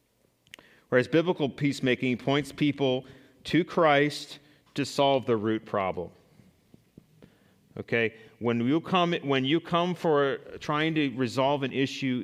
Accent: American